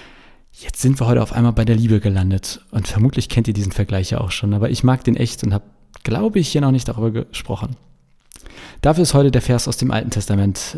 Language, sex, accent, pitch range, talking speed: German, male, German, 105-130 Hz, 235 wpm